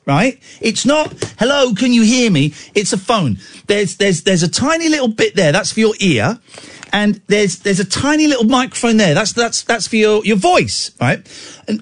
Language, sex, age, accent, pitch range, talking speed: English, male, 40-59, British, 190-260 Hz, 205 wpm